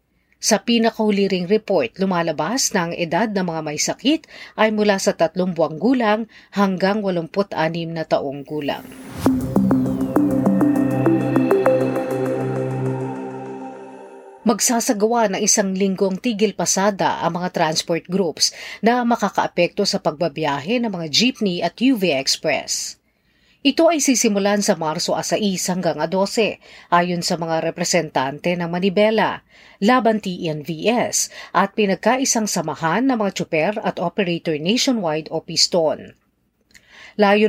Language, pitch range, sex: Filipino, 160-215 Hz, female